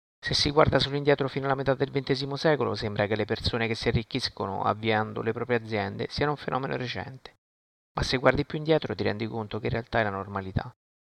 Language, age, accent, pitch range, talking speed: Italian, 30-49, native, 105-130 Hz, 220 wpm